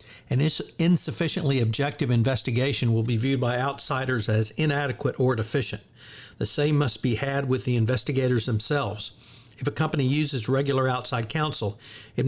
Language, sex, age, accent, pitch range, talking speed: English, male, 50-69, American, 115-140 Hz, 145 wpm